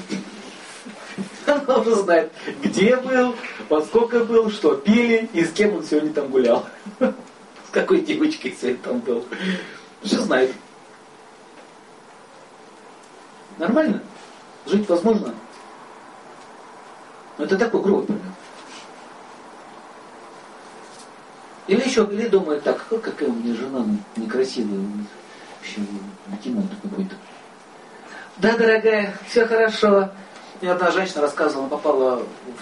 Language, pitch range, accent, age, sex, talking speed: Russian, 130-220 Hz, native, 40-59, male, 100 wpm